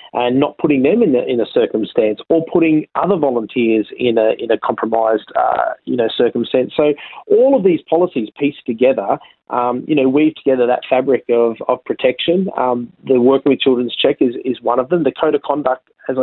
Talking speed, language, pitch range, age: 205 wpm, English, 120-145 Hz, 30-49